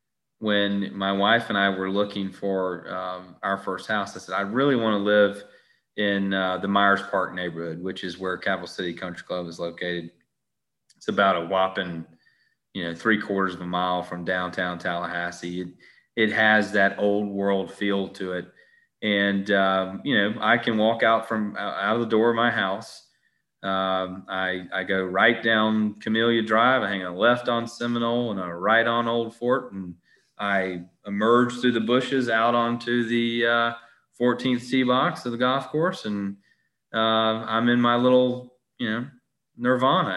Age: 30-49